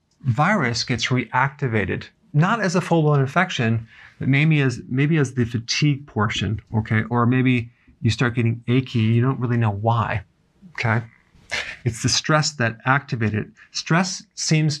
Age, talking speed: 40-59, 145 wpm